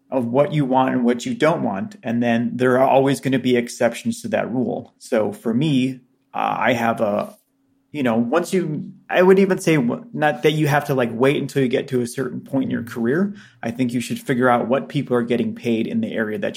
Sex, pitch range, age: male, 120-165 Hz, 30-49